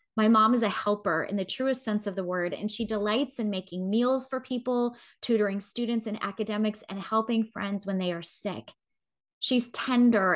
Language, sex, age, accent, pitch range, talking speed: English, female, 20-39, American, 195-240 Hz, 190 wpm